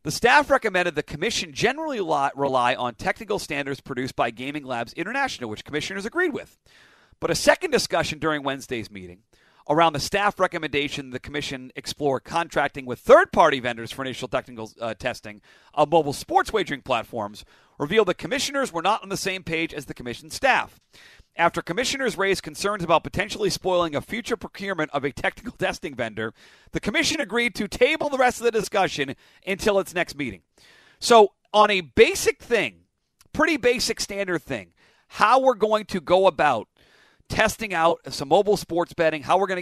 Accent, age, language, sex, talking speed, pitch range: American, 40-59, English, male, 170 wpm, 145-215 Hz